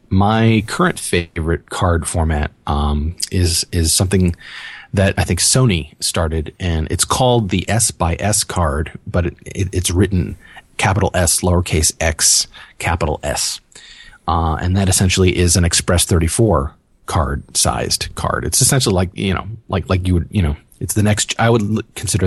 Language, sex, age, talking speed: English, male, 30-49, 160 wpm